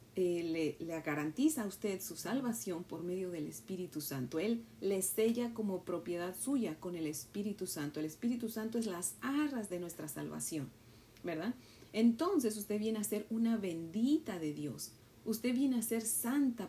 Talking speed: 170 wpm